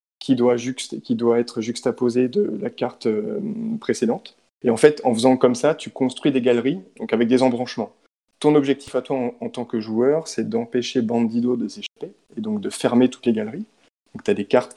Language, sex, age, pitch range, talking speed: French, male, 20-39, 115-140 Hz, 215 wpm